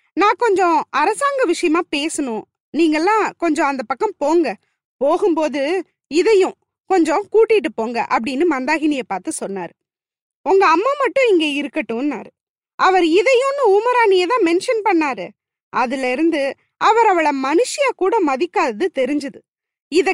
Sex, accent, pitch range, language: female, native, 280-395 Hz, Tamil